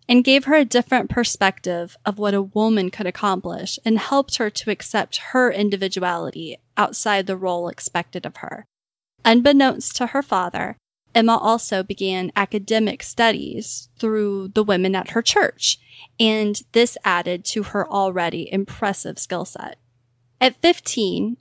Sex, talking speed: female, 145 wpm